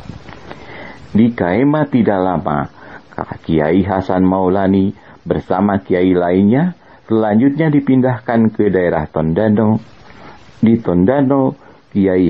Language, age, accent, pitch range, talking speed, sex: Indonesian, 40-59, native, 85-115 Hz, 95 wpm, male